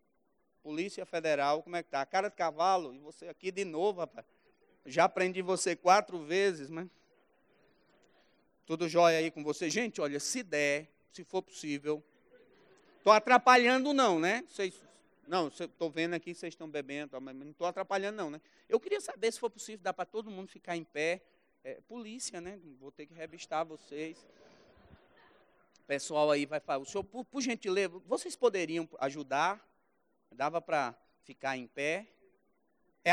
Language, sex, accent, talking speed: Portuguese, male, Brazilian, 165 wpm